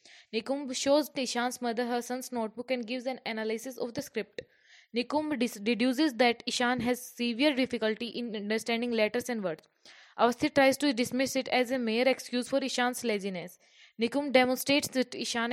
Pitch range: 225-260 Hz